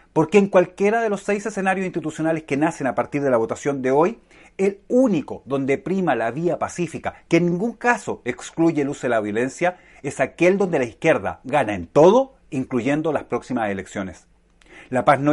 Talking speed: 190 wpm